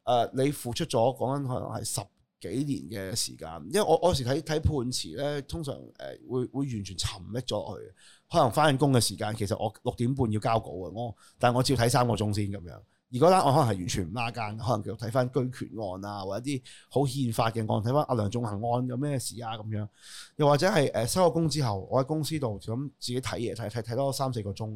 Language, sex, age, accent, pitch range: Chinese, male, 20-39, native, 105-135 Hz